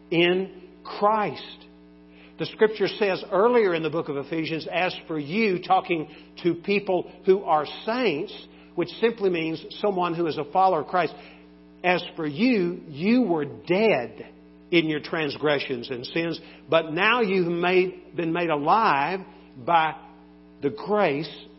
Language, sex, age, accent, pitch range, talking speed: English, male, 50-69, American, 135-180 Hz, 140 wpm